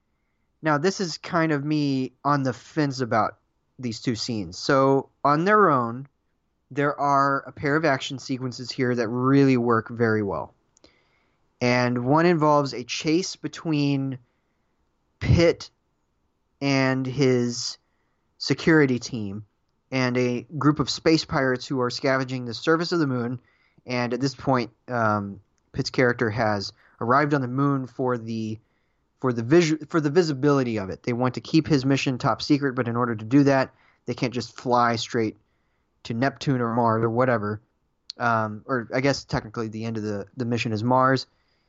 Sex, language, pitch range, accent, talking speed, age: male, English, 115-140 Hz, American, 165 wpm, 30-49